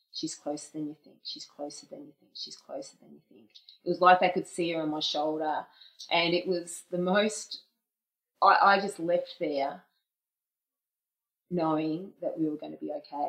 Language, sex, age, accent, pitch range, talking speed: English, female, 30-49, Australian, 155-185 Hz, 195 wpm